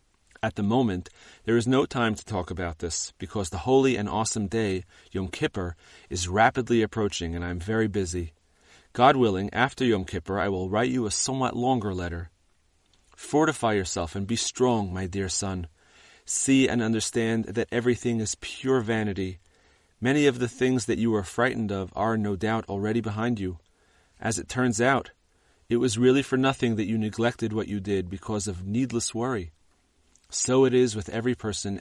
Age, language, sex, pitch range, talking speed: 30-49, English, male, 90-120 Hz, 180 wpm